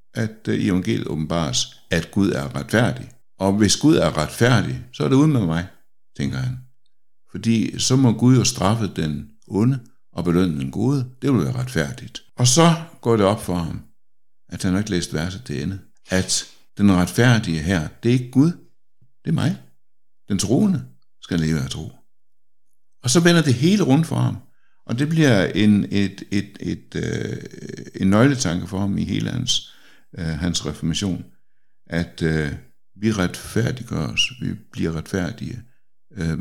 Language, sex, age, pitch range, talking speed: Danish, male, 60-79, 85-125 Hz, 165 wpm